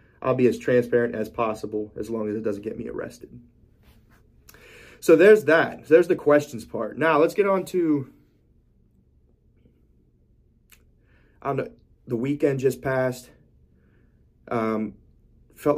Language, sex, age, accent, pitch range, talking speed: English, male, 30-49, American, 110-120 Hz, 135 wpm